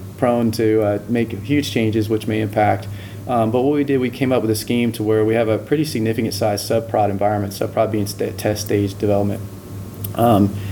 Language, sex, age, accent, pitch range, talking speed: English, male, 20-39, American, 100-110 Hz, 205 wpm